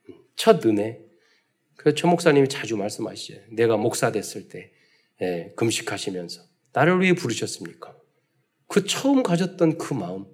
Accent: native